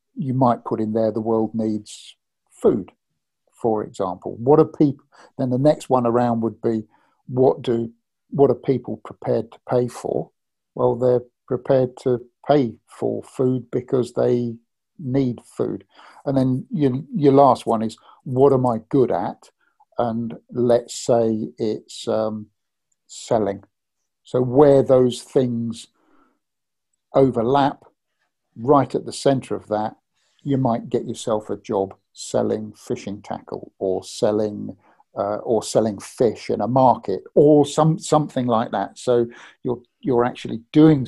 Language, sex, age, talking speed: English, male, 50-69, 145 wpm